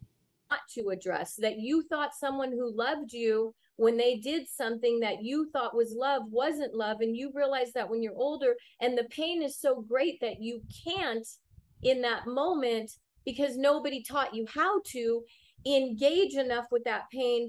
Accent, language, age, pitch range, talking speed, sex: American, English, 30-49, 235-290 Hz, 170 wpm, female